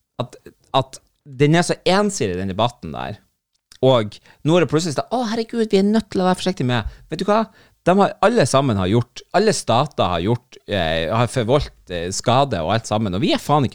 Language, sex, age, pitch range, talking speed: English, male, 30-49, 105-145 Hz, 220 wpm